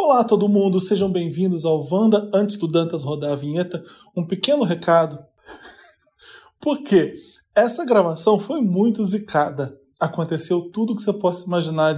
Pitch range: 160-195 Hz